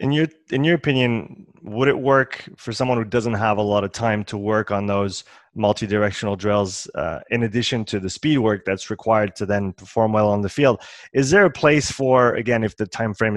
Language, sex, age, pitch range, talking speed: French, male, 20-39, 105-120 Hz, 220 wpm